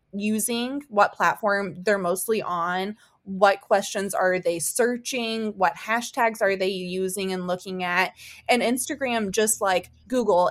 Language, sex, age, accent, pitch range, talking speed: English, female, 20-39, American, 180-215 Hz, 135 wpm